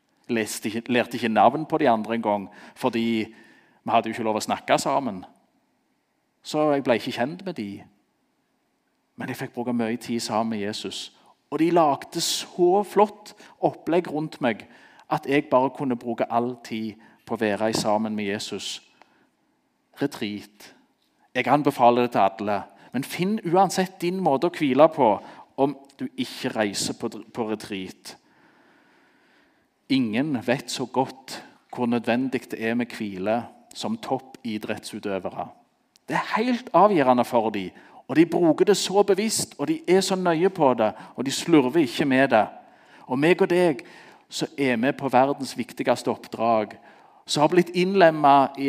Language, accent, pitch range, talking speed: Danish, Norwegian, 115-175 Hz, 160 wpm